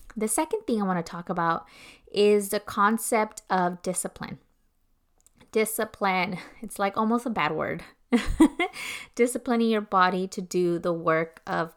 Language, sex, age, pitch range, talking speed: English, female, 20-39, 190-230 Hz, 145 wpm